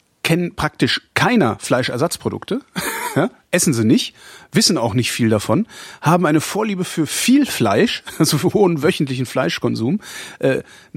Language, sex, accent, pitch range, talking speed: German, male, German, 125-165 Hz, 135 wpm